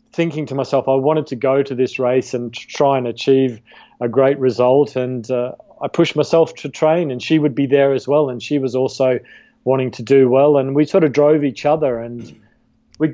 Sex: male